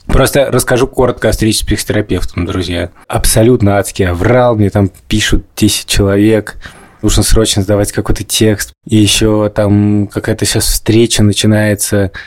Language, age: Russian, 20-39